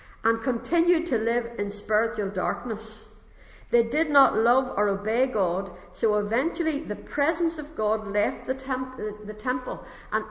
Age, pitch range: 60-79, 200-260 Hz